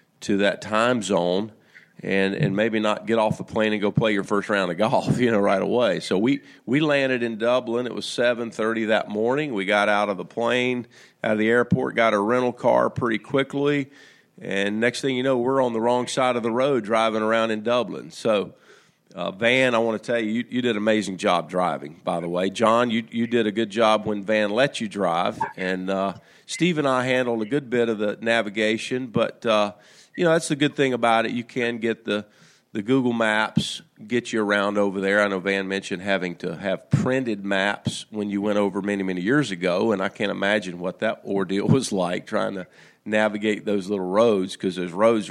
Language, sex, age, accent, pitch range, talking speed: English, male, 40-59, American, 100-120 Hz, 225 wpm